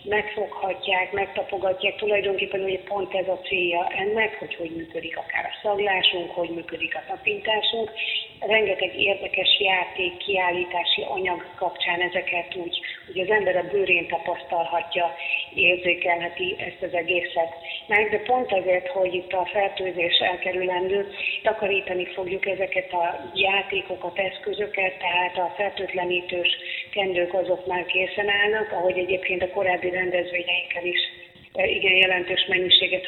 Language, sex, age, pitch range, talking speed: Hungarian, female, 40-59, 175-195 Hz, 125 wpm